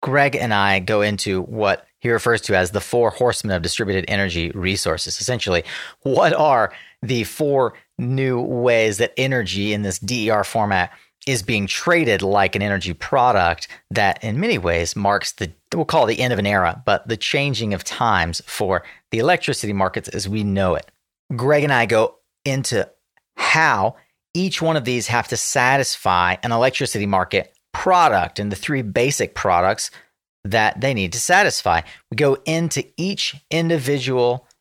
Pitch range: 100-130 Hz